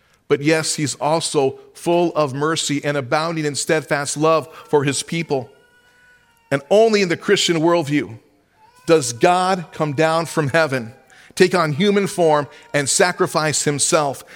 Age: 40-59